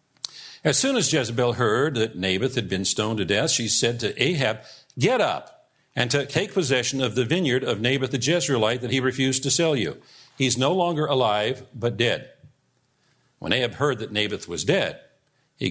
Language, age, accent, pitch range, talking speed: English, 50-69, American, 115-140 Hz, 185 wpm